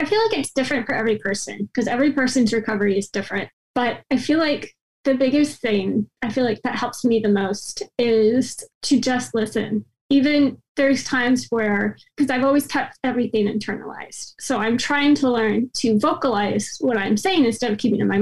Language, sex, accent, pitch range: English, female, American, 220-270 Hz